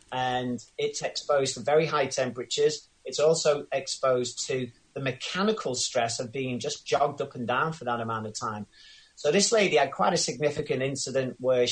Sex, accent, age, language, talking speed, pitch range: male, British, 30-49, English, 180 wpm, 125-150 Hz